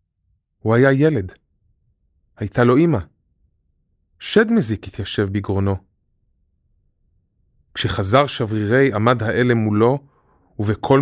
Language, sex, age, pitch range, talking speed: Hebrew, male, 30-49, 90-120 Hz, 85 wpm